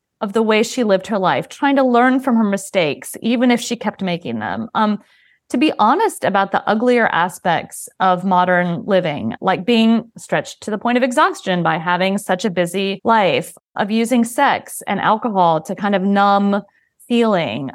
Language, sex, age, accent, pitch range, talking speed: English, female, 30-49, American, 185-235 Hz, 185 wpm